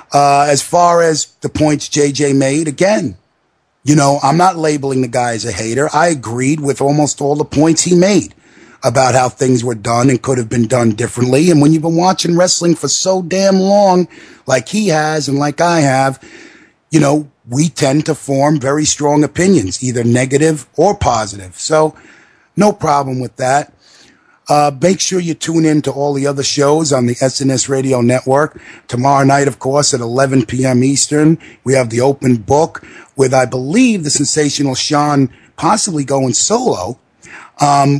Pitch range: 130-150 Hz